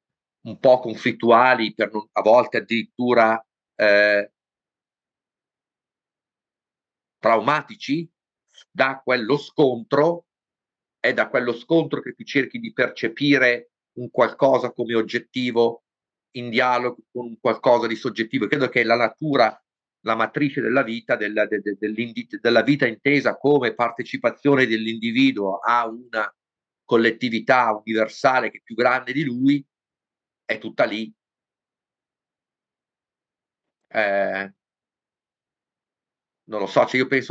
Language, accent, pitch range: Italian, native, 110-130 Hz